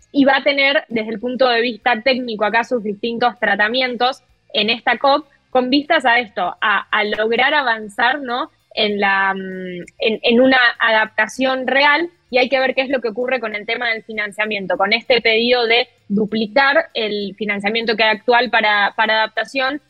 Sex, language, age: female, Spanish, 20-39